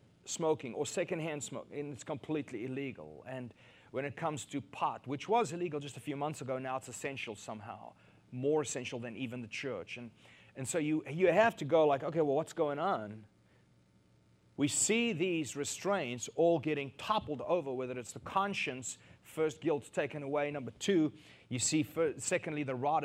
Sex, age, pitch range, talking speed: male, 30-49, 115-155 Hz, 180 wpm